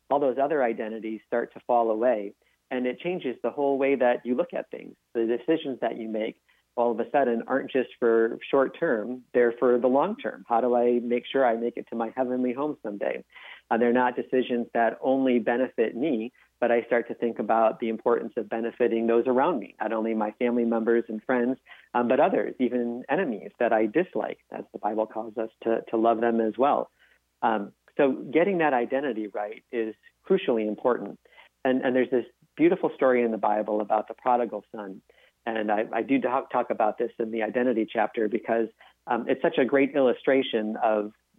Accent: American